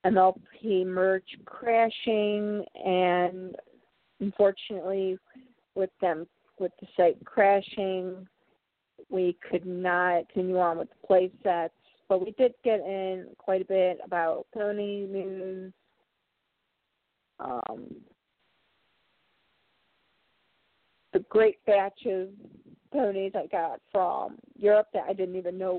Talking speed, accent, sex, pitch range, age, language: 105 wpm, American, female, 185-230 Hz, 40-59, English